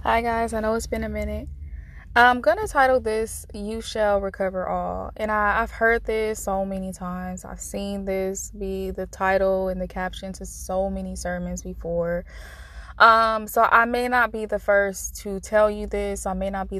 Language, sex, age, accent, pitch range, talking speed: English, female, 20-39, American, 180-220 Hz, 195 wpm